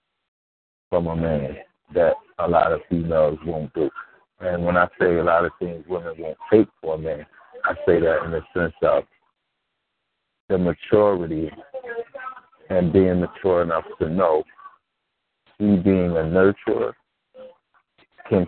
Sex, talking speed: male, 145 wpm